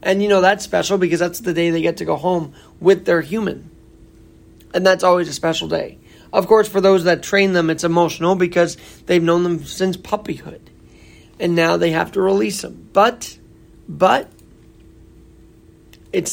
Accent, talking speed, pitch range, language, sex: American, 175 wpm, 120-185 Hz, English, male